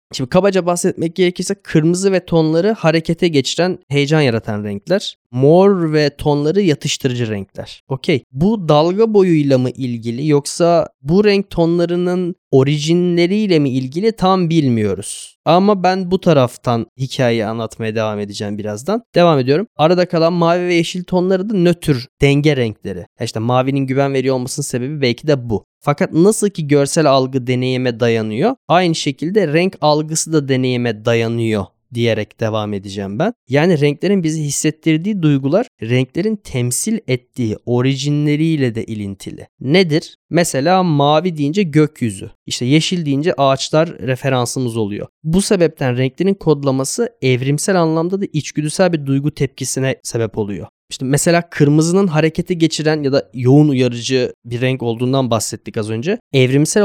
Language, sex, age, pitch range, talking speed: Turkish, male, 10-29, 125-175 Hz, 140 wpm